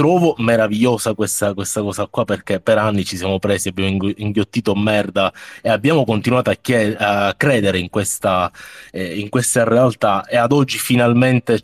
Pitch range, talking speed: 100-120 Hz, 150 wpm